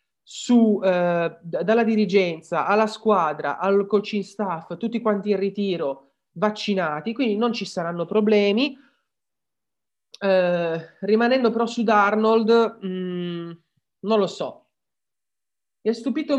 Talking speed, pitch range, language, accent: 115 wpm, 170-220 Hz, Italian, native